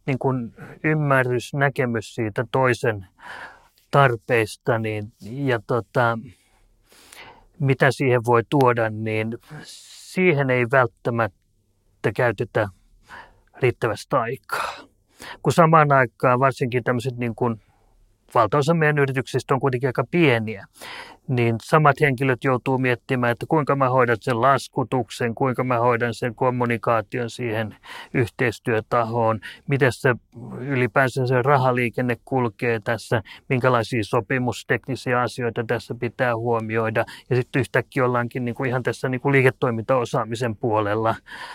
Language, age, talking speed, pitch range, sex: Finnish, 30-49, 110 wpm, 115-135 Hz, male